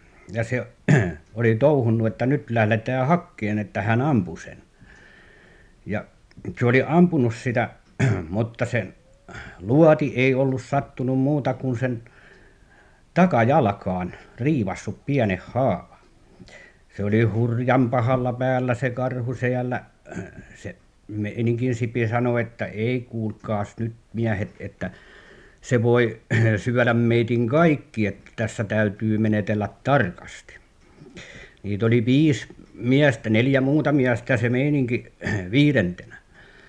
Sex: male